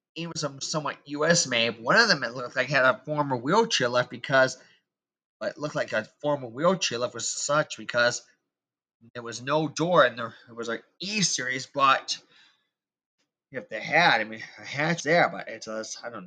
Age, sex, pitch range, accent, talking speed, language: 30-49, male, 120-165 Hz, American, 190 wpm, English